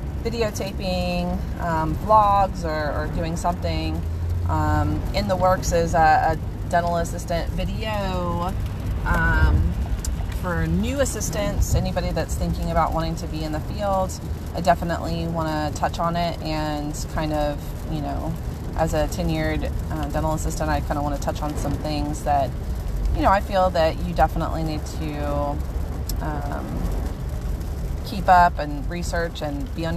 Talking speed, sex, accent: 150 wpm, female, American